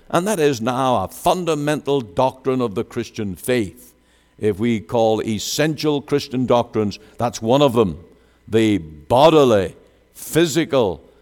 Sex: male